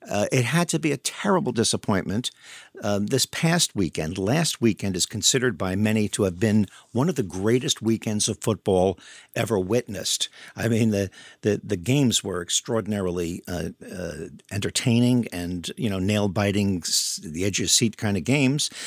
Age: 50-69